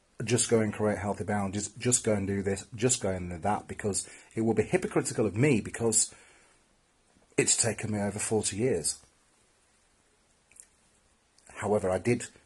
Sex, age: male, 40-59